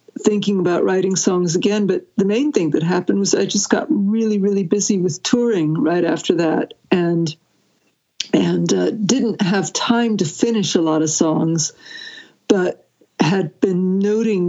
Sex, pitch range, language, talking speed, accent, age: female, 175-215 Hz, English, 160 wpm, American, 60-79